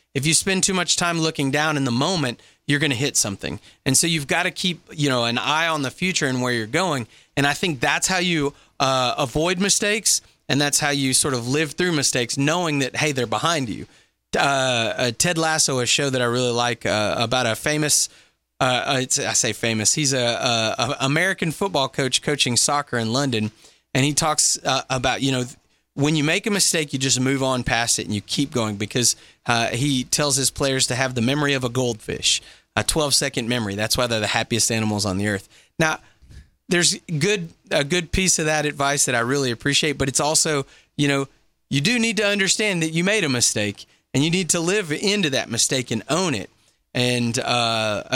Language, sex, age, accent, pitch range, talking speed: English, male, 30-49, American, 120-155 Hz, 215 wpm